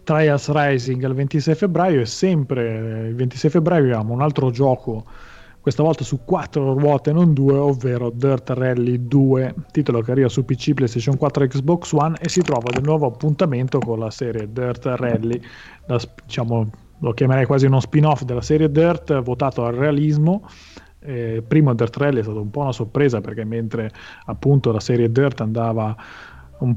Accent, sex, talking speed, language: native, male, 170 wpm, Italian